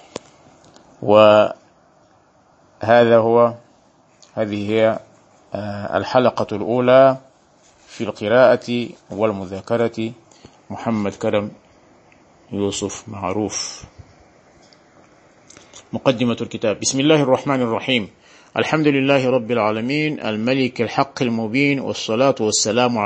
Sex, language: male, Arabic